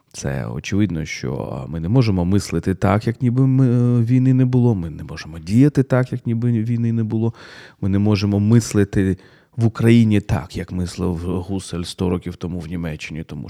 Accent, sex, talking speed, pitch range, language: native, male, 175 wpm, 95-125 Hz, Ukrainian